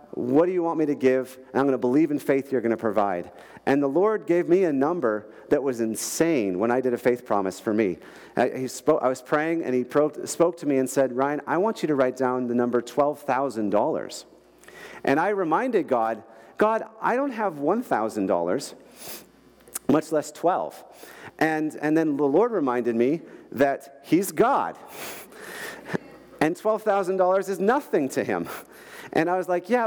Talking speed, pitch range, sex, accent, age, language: 185 wpm, 125-165 Hz, male, American, 40-59, English